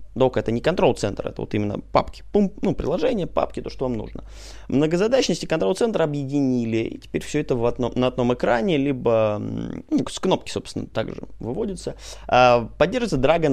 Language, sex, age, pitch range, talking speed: Russian, male, 20-39, 110-155 Hz, 170 wpm